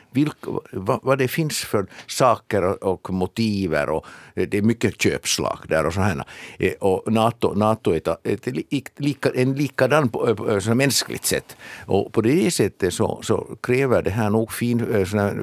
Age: 60-79